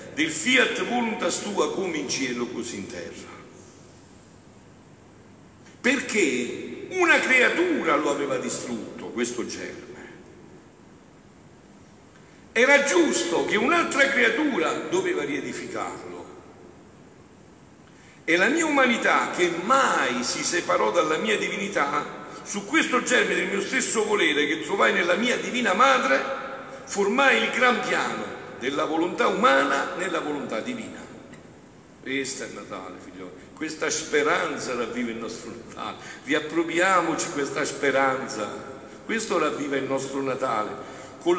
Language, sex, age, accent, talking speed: Italian, male, 60-79, native, 115 wpm